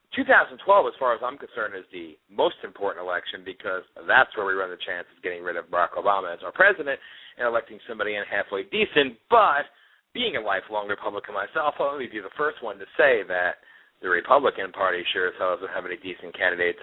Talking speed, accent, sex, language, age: 205 wpm, American, male, English, 40-59